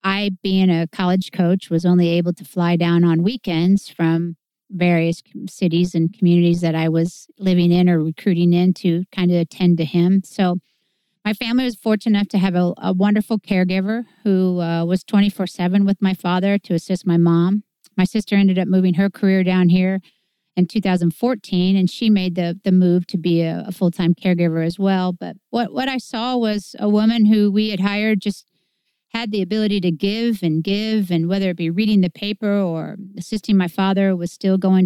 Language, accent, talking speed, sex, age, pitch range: English, American, 195 wpm, female, 50-69, 180-210 Hz